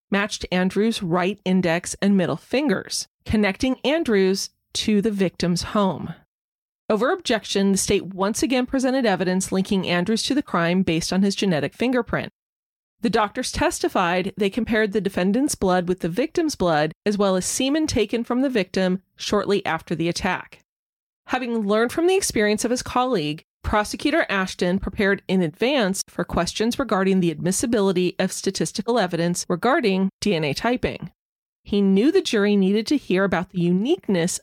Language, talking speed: English, 155 wpm